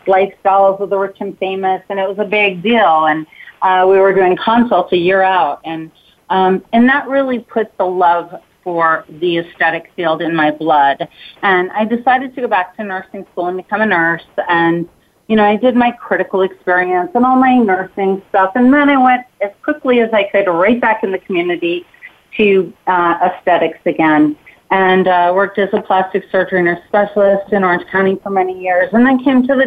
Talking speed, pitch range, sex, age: 200 wpm, 180-220 Hz, female, 30-49